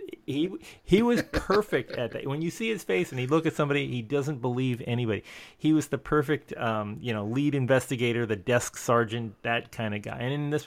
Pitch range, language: 105-125 Hz, English